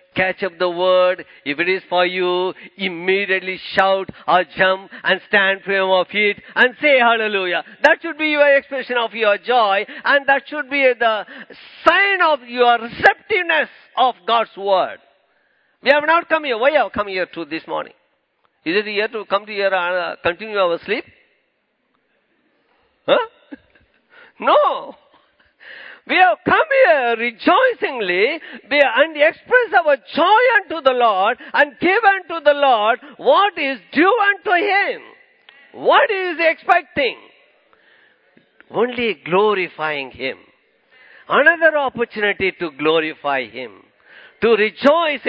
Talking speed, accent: 135 wpm, Indian